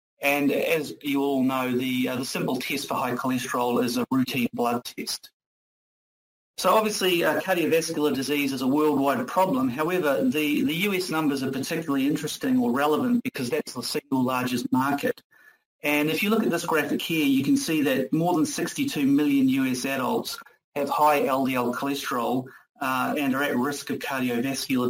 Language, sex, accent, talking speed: English, male, Australian, 175 wpm